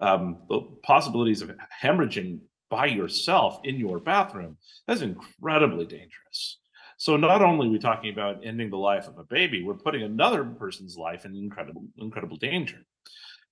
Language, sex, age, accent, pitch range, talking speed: English, male, 40-59, American, 100-125 Hz, 155 wpm